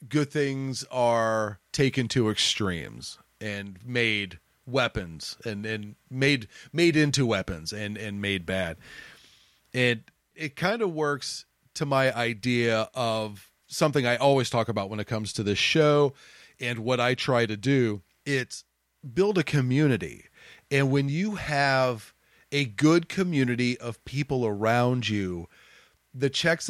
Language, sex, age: English, male, 40-59